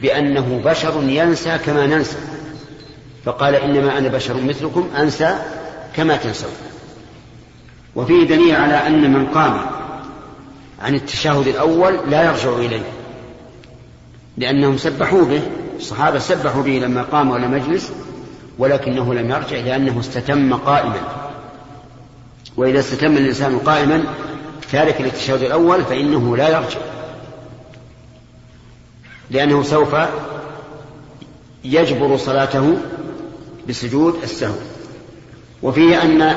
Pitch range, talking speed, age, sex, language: 130-155 Hz, 95 wpm, 50-69, male, Arabic